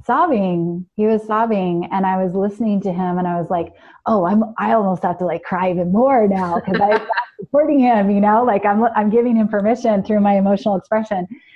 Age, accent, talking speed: 20-39, American, 215 wpm